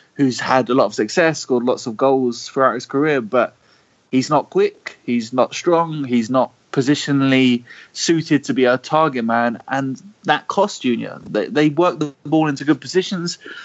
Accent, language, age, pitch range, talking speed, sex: British, English, 20-39, 130-160 Hz, 180 wpm, male